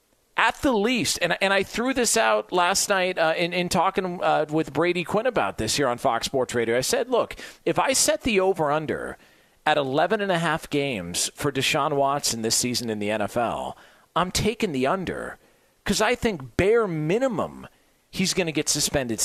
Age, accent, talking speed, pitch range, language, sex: 40-59, American, 190 wpm, 140-220 Hz, English, male